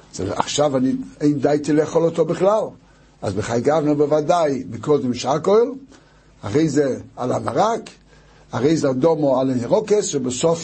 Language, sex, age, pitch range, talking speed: Hebrew, male, 60-79, 125-150 Hz, 125 wpm